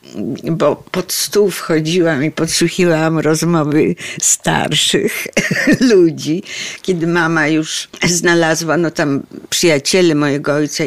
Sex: female